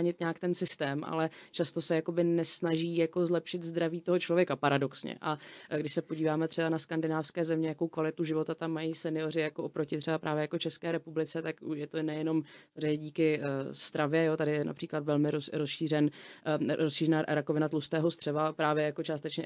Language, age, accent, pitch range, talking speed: Czech, 30-49, native, 155-170 Hz, 180 wpm